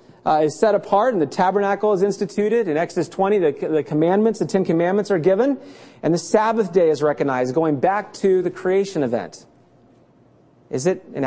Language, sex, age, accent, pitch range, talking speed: English, male, 30-49, American, 150-190 Hz, 185 wpm